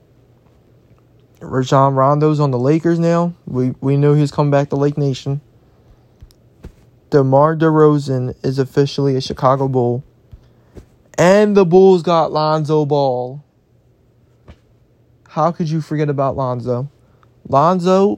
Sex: male